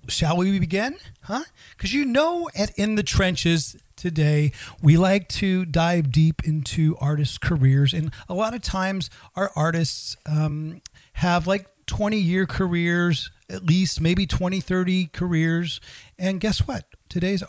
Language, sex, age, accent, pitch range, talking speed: English, male, 40-59, American, 145-190 Hz, 150 wpm